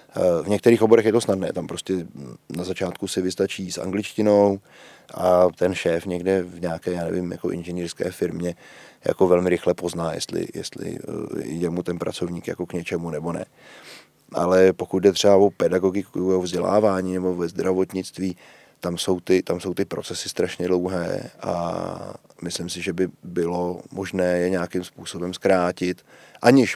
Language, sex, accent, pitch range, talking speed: Czech, male, native, 90-100 Hz, 155 wpm